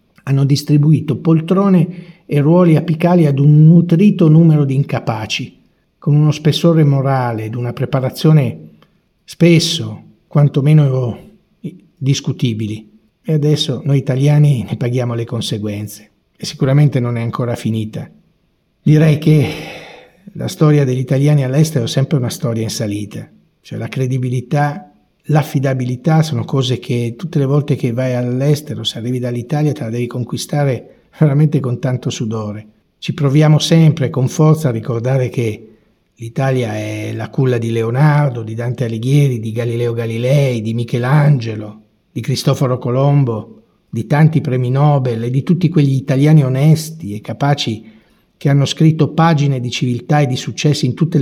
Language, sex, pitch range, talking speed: Italian, male, 120-150 Hz, 140 wpm